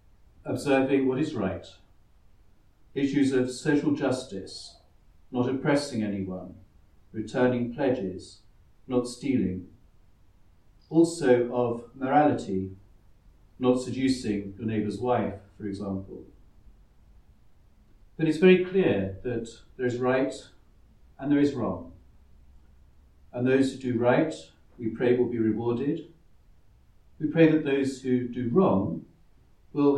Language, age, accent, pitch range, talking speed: English, 50-69, British, 100-130 Hz, 110 wpm